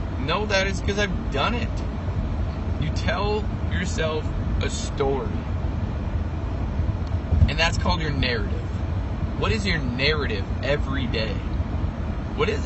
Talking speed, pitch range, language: 120 wpm, 85-105 Hz, English